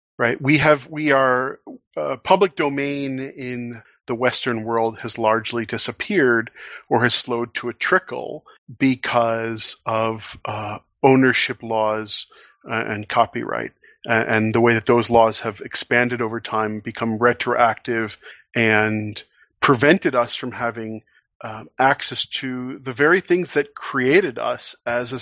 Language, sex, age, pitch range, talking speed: English, male, 40-59, 115-135 Hz, 135 wpm